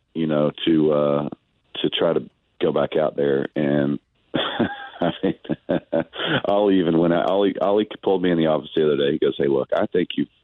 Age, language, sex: 40-59, English, male